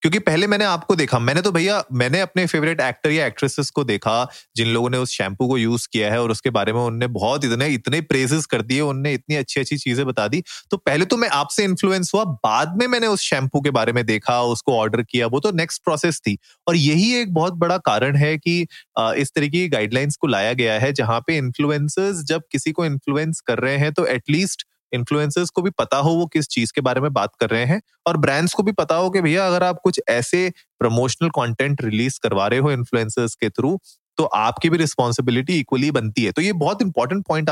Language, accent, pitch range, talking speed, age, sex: Hindi, native, 125-170 Hz, 230 wpm, 30-49, male